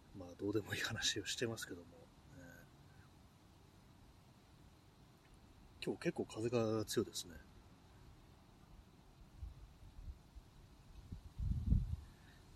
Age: 30-49